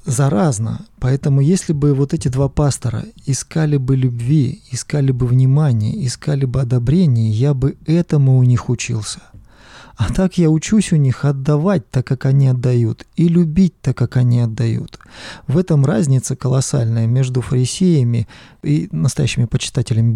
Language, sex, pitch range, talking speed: Russian, male, 125-155 Hz, 145 wpm